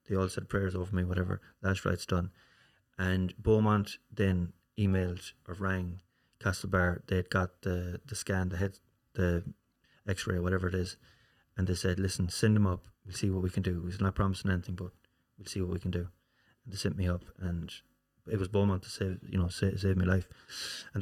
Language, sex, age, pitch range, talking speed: English, male, 20-39, 90-105 Hz, 210 wpm